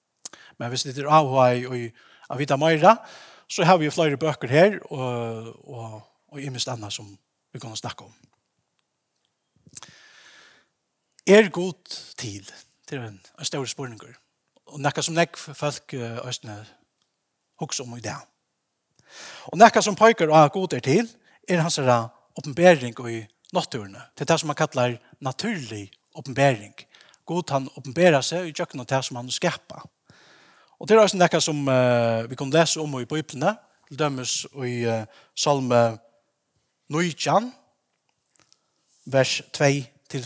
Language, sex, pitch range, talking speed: English, male, 120-165 Hz, 140 wpm